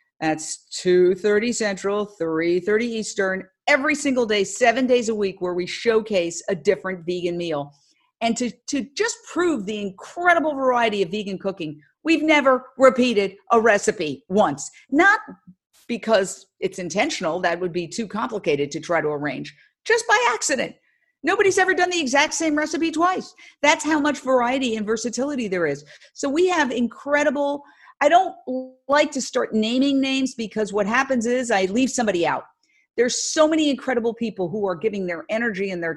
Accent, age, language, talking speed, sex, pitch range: American, 50-69, English, 165 wpm, female, 190-275 Hz